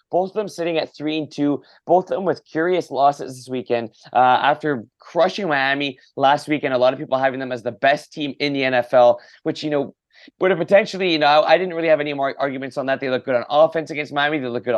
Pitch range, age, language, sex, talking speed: 130-160 Hz, 20-39, English, male, 250 wpm